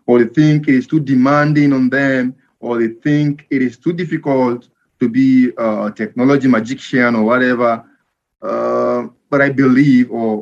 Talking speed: 160 wpm